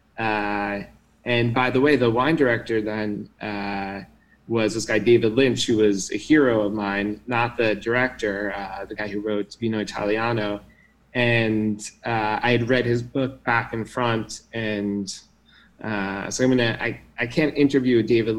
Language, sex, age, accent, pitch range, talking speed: English, male, 20-39, American, 110-125 Hz, 160 wpm